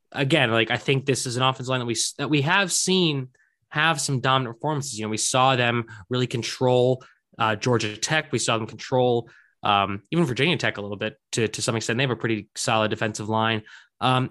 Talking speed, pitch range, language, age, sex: 220 wpm, 110-140 Hz, English, 20-39, male